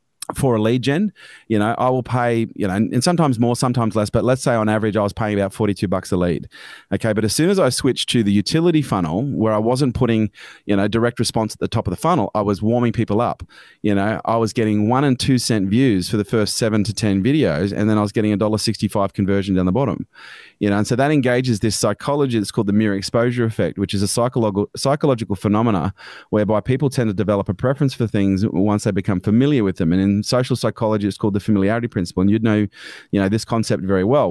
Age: 30-49